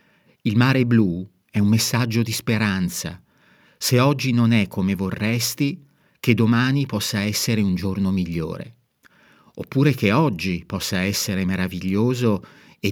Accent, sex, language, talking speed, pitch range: native, male, Italian, 130 wpm, 95-125 Hz